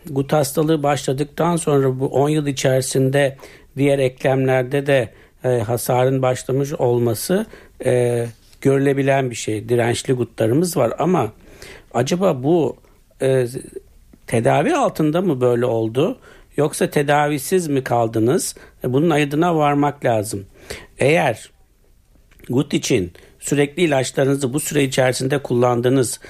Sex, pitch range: male, 125-150 Hz